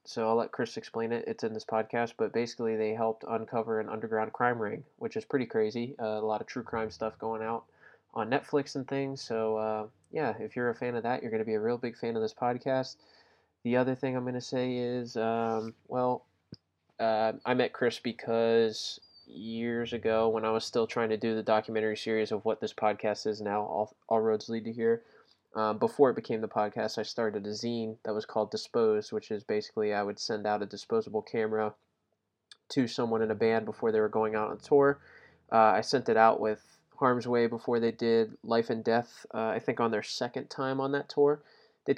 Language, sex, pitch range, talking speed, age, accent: English, male, 110-125 Hz, 225 wpm, 20-39, American